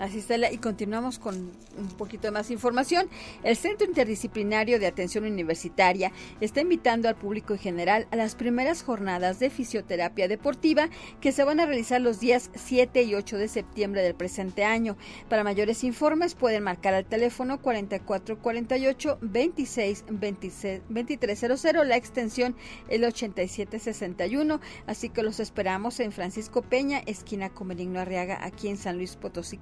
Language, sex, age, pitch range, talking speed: Spanish, female, 40-59, 205-255 Hz, 145 wpm